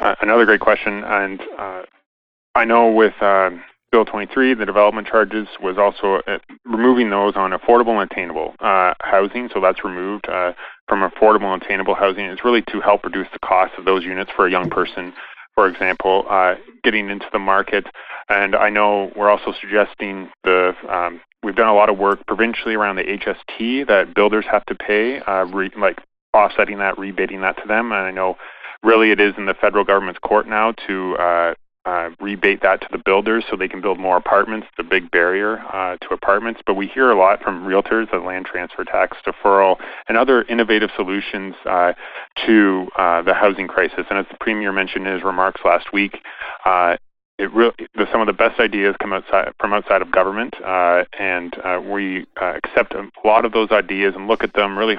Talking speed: 195 wpm